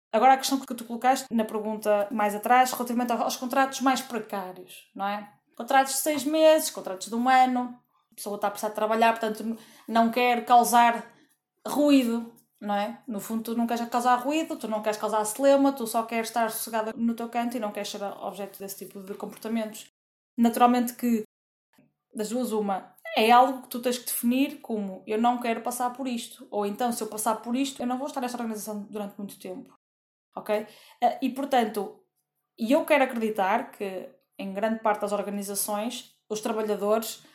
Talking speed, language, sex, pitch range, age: 190 wpm, Portuguese, female, 210-245 Hz, 20-39